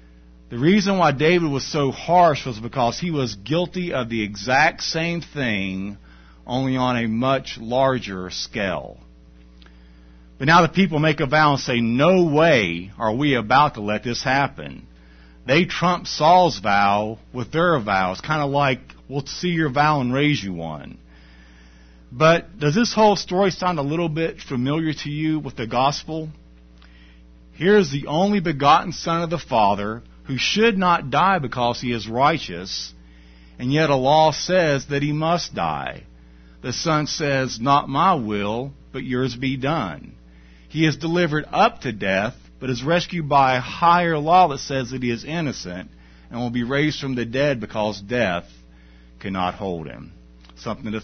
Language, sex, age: English, male, 50-69